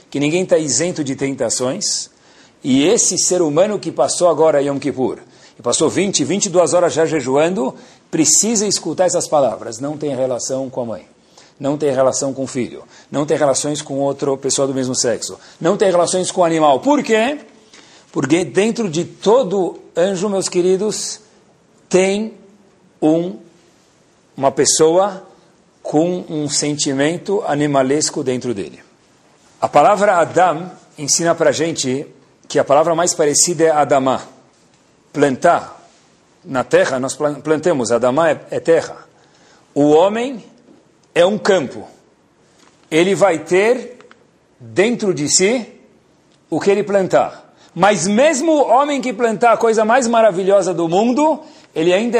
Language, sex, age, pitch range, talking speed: Portuguese, male, 50-69, 145-205 Hz, 145 wpm